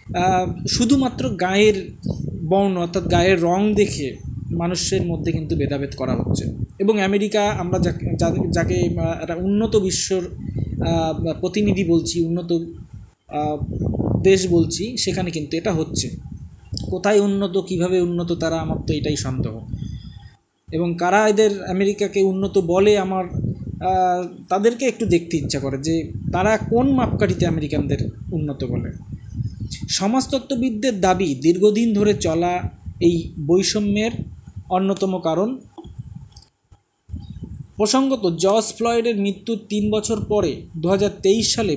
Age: 20-39